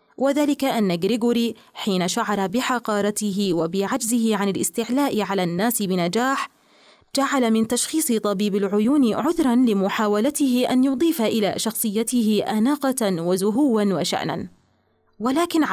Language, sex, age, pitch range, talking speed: Arabic, female, 20-39, 200-260 Hz, 105 wpm